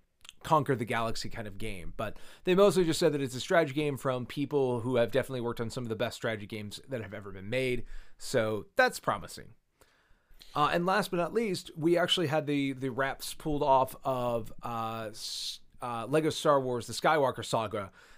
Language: English